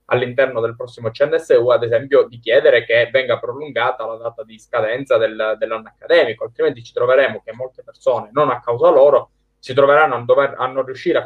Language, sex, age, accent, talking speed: Italian, male, 20-39, native, 175 wpm